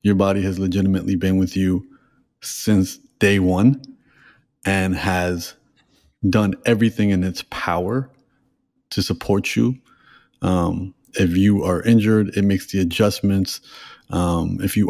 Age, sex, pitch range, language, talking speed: 30-49, male, 90-100 Hz, English, 130 wpm